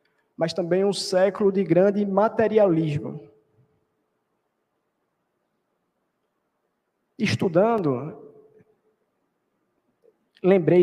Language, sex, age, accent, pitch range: Portuguese, male, 20-39, Brazilian, 150-185 Hz